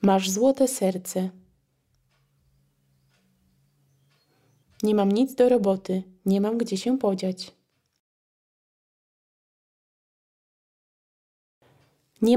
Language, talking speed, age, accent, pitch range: Russian, 70 wpm, 20-39, Polish, 185-220 Hz